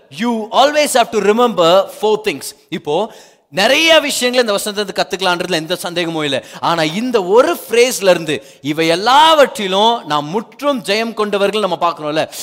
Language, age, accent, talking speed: Tamil, 30-49, native, 190 wpm